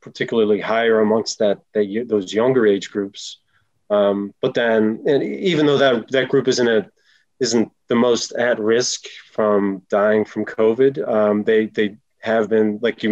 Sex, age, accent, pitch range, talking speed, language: male, 30-49, American, 105-120 Hz, 165 wpm, English